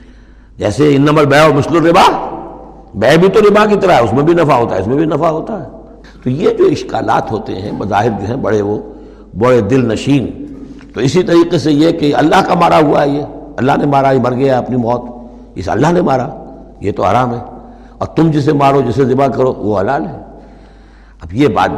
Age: 60-79